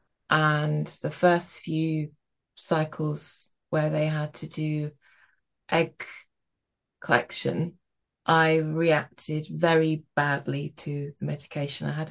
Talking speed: 105 wpm